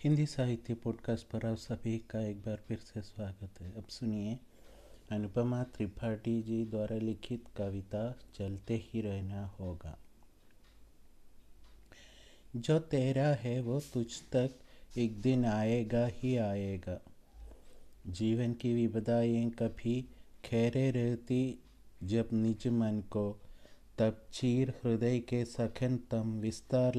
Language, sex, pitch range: Hindi, male, 105-130 Hz